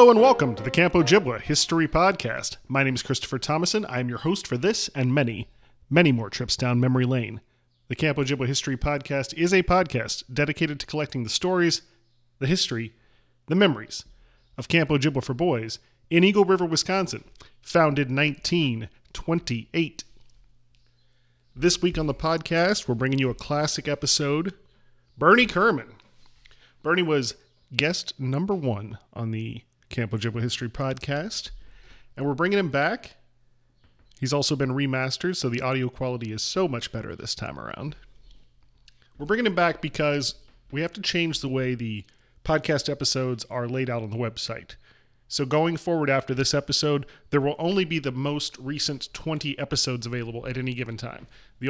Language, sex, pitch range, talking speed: English, male, 120-155 Hz, 160 wpm